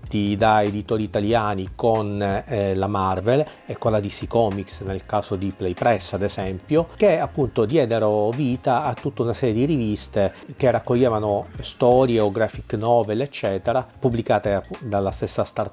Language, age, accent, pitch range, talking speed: Italian, 40-59, native, 100-125 Hz, 155 wpm